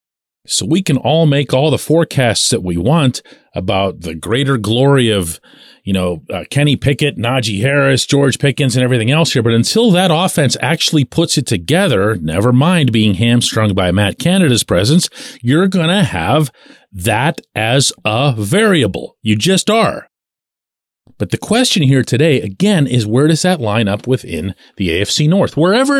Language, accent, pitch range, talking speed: English, American, 105-155 Hz, 170 wpm